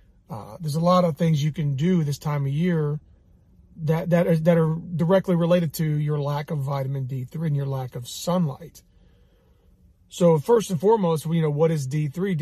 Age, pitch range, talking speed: 30-49, 140-165 Hz, 205 wpm